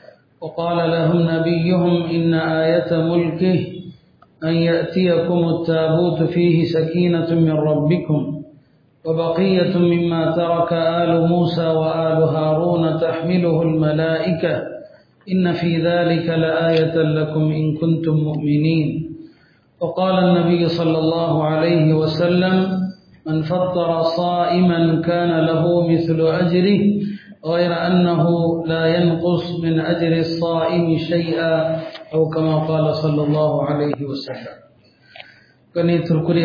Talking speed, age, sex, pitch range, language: 80 wpm, 40-59, male, 160-175 Hz, Tamil